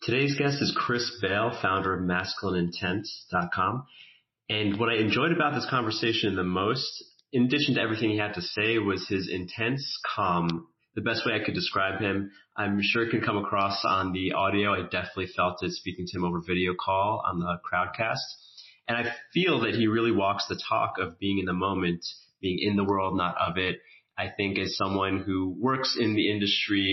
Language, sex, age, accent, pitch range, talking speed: English, male, 30-49, American, 95-110 Hz, 195 wpm